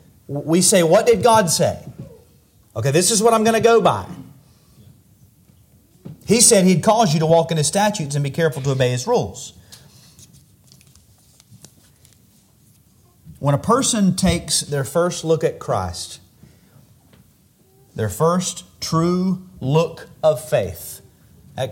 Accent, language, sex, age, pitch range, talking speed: American, English, male, 40-59, 115-160 Hz, 135 wpm